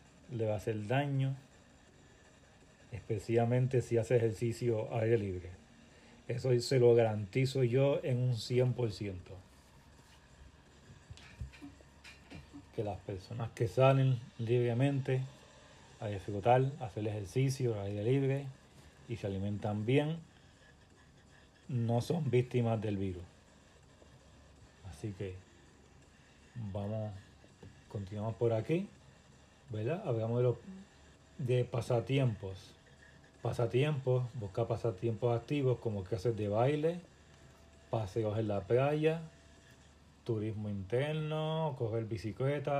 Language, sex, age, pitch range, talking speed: Spanish, male, 40-59, 100-125 Hz, 95 wpm